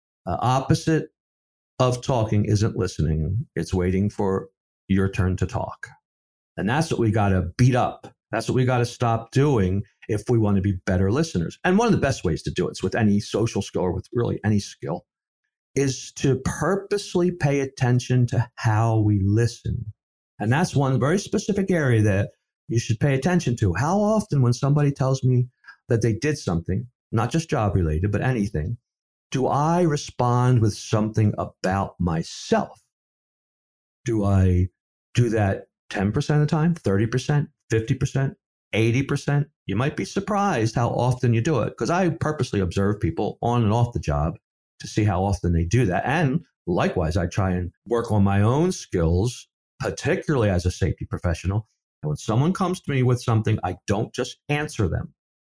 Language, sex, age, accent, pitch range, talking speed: English, male, 50-69, American, 100-140 Hz, 175 wpm